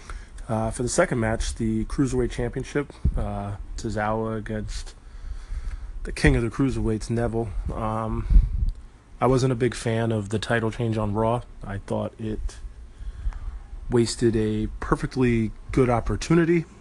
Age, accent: 20-39, American